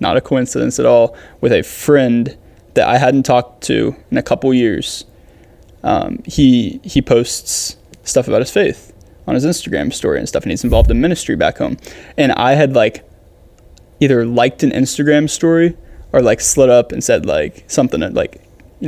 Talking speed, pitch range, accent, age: 185 wpm, 115-140 Hz, American, 20-39